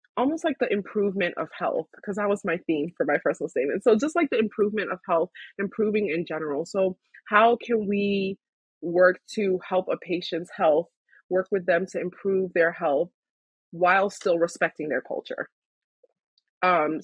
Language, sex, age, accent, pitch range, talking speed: English, female, 20-39, American, 165-205 Hz, 170 wpm